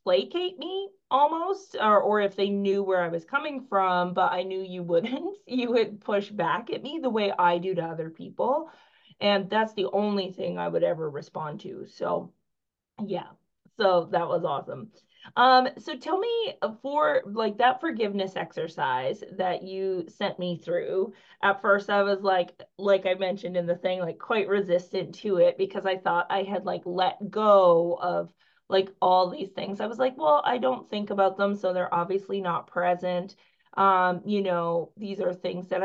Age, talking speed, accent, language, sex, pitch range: 30-49, 185 wpm, American, English, female, 180-230 Hz